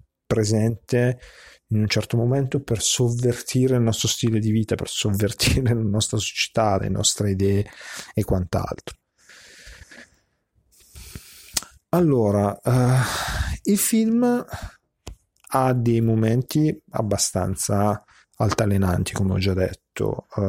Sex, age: male, 40-59